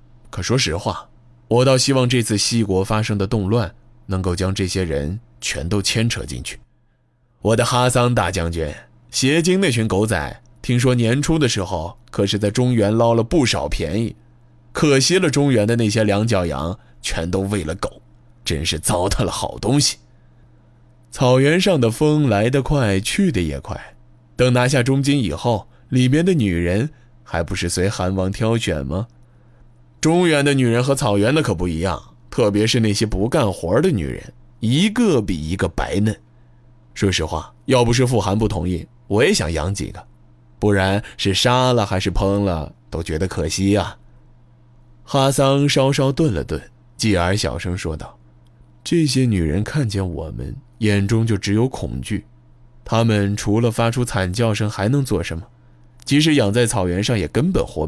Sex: male